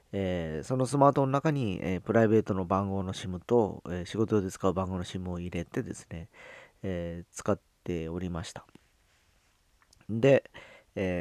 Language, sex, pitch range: Japanese, male, 90-115 Hz